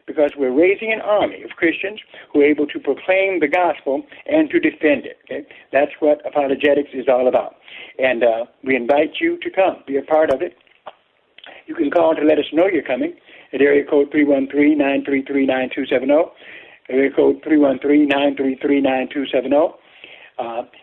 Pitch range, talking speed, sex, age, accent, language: 140-205 Hz, 155 wpm, male, 60-79, American, English